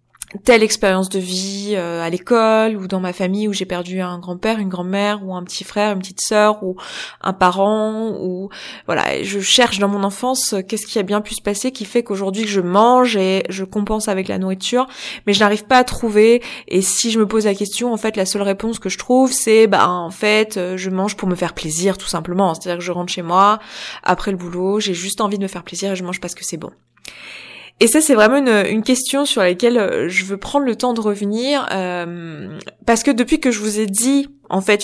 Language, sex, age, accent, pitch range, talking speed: French, female, 20-39, French, 185-225 Hz, 240 wpm